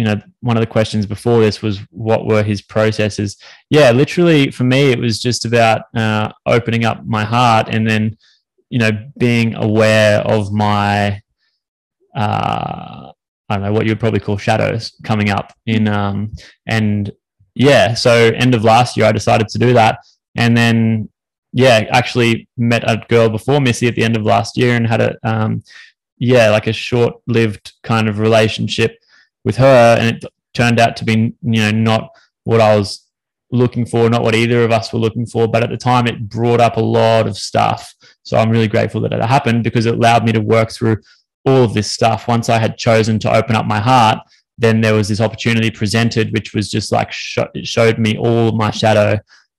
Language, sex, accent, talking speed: English, male, Australian, 200 wpm